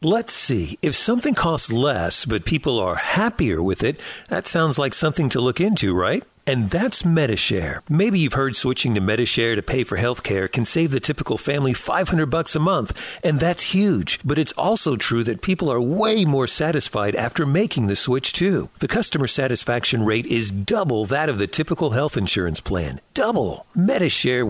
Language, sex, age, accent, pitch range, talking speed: English, male, 50-69, American, 120-175 Hz, 180 wpm